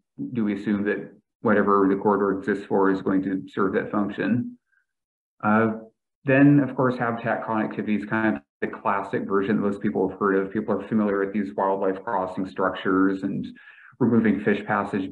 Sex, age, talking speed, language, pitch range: male, 30-49, 180 wpm, English, 95-110 Hz